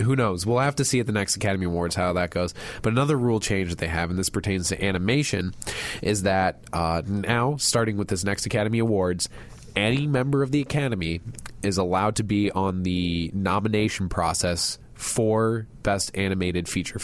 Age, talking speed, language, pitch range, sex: 20-39, 185 wpm, English, 95-115 Hz, male